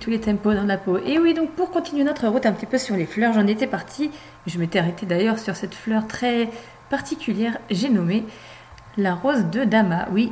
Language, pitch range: French, 195-260 Hz